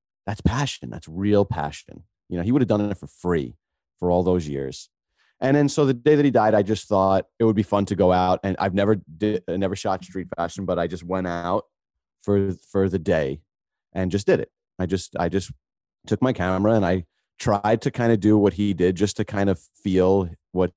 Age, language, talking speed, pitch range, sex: 30-49, English, 230 wpm, 90-110 Hz, male